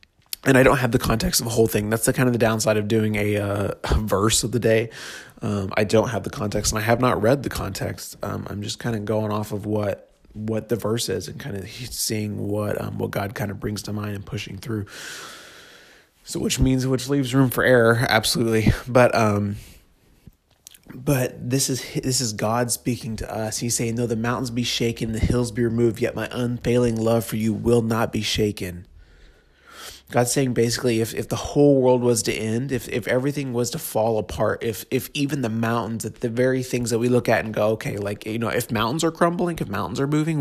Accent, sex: American, male